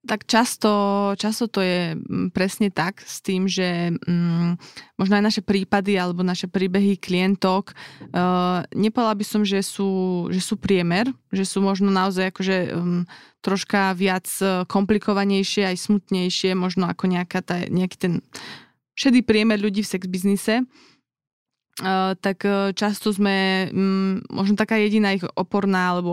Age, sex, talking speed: 20-39, female, 135 wpm